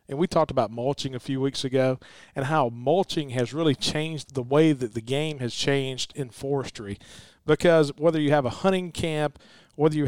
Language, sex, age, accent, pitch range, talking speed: English, male, 40-59, American, 130-160 Hz, 195 wpm